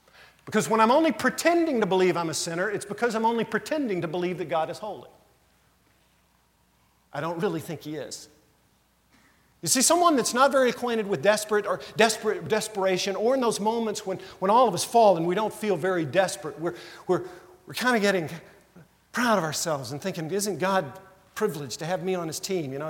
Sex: male